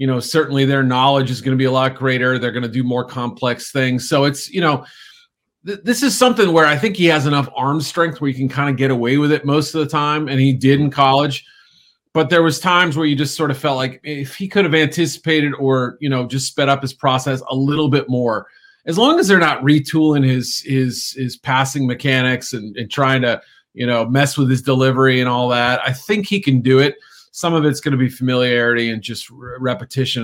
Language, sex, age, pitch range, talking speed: English, male, 40-59, 130-155 Hz, 235 wpm